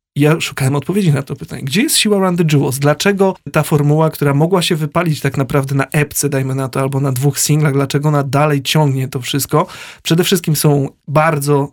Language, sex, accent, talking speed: Polish, male, native, 200 wpm